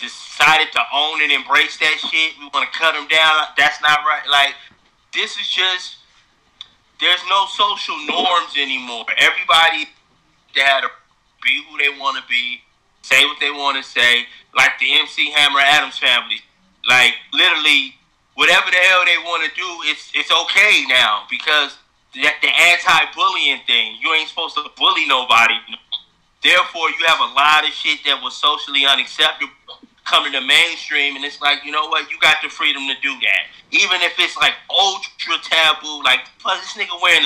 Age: 30-49